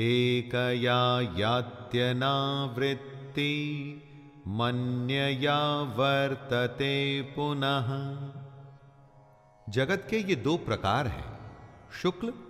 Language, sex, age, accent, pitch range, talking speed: Hindi, male, 40-59, native, 105-155 Hz, 60 wpm